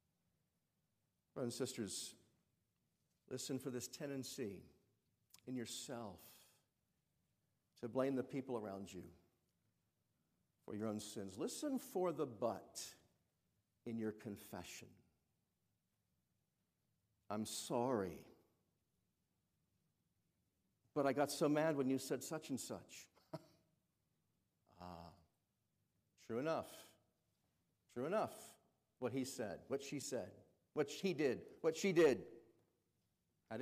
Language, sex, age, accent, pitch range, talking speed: English, male, 50-69, American, 105-140 Hz, 100 wpm